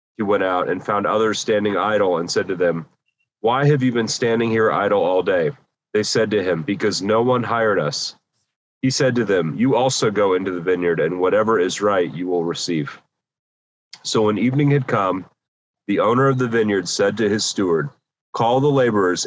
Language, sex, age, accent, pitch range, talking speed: English, male, 40-59, American, 105-125 Hz, 200 wpm